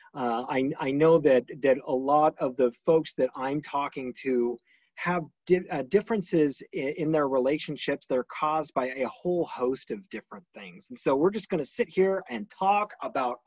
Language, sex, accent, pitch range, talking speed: English, male, American, 135-185 Hz, 195 wpm